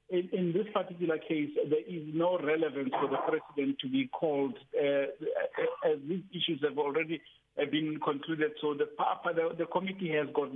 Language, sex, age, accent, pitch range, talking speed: English, male, 50-69, South African, 145-175 Hz, 165 wpm